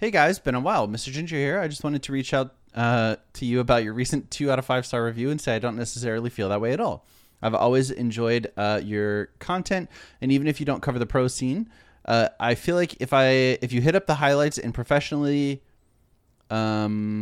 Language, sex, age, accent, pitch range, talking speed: English, male, 20-39, American, 110-140 Hz, 230 wpm